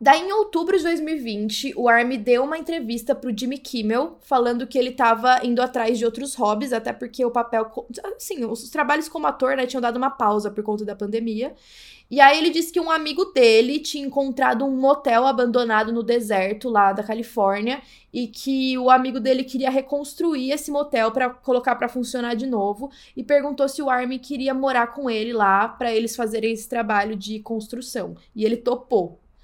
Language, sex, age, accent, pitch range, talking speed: Portuguese, female, 10-29, Brazilian, 230-280 Hz, 190 wpm